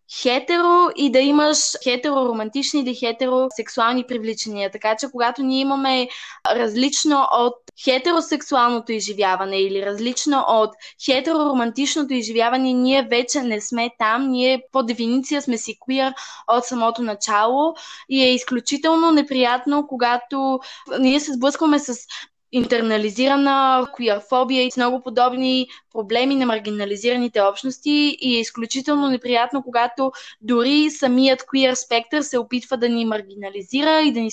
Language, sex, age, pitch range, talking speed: Bulgarian, female, 20-39, 230-270 Hz, 120 wpm